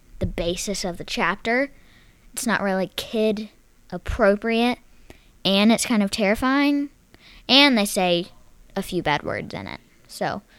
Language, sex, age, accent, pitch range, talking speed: English, female, 10-29, American, 190-245 Hz, 140 wpm